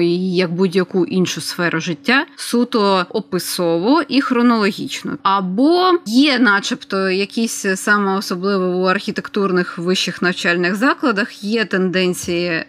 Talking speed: 105 wpm